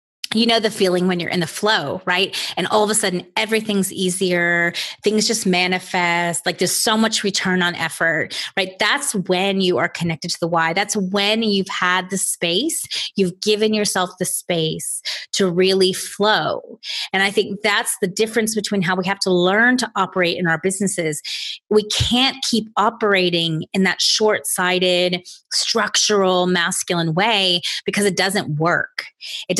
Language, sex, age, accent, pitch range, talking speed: English, female, 30-49, American, 180-215 Hz, 165 wpm